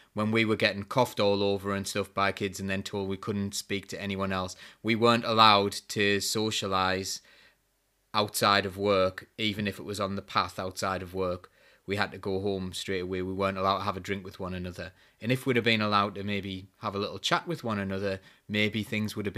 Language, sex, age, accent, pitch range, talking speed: English, male, 20-39, British, 100-135 Hz, 230 wpm